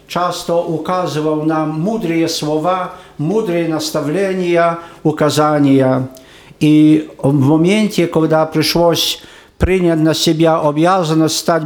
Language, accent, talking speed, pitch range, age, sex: Polish, native, 95 wpm, 155-175 Hz, 50-69, male